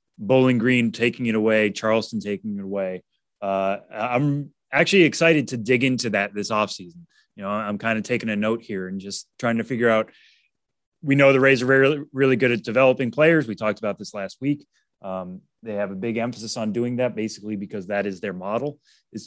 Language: English